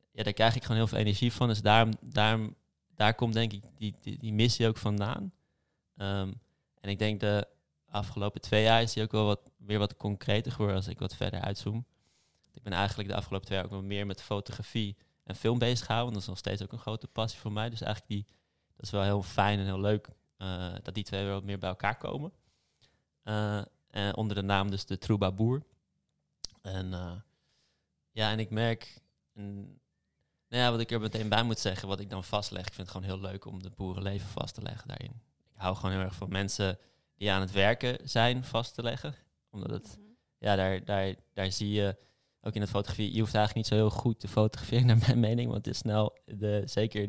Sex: male